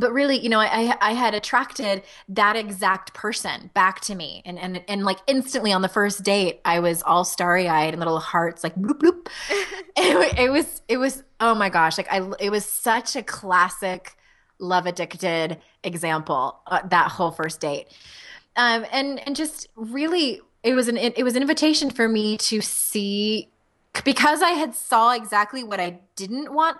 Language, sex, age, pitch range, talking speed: English, female, 20-39, 180-255 Hz, 185 wpm